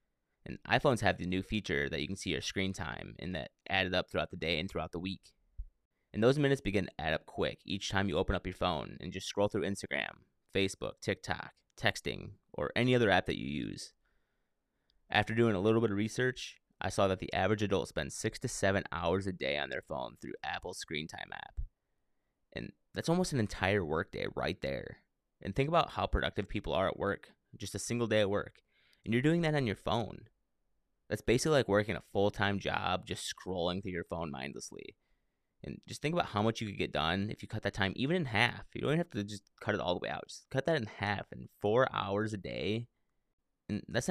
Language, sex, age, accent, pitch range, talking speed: English, male, 30-49, American, 95-110 Hz, 225 wpm